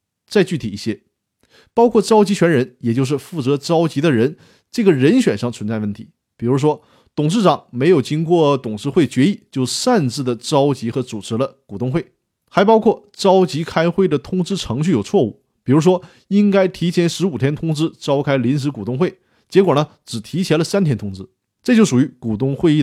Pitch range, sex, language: 120-180 Hz, male, Chinese